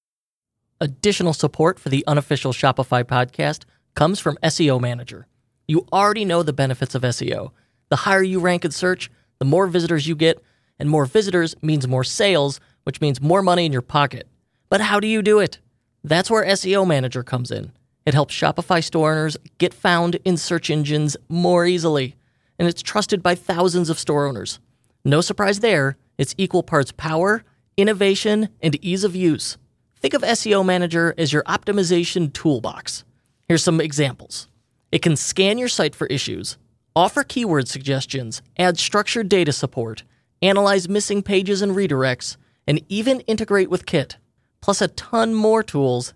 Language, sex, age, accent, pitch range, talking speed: English, male, 30-49, American, 135-190 Hz, 165 wpm